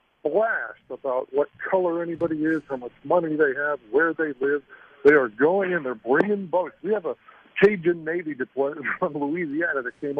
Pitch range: 135-175 Hz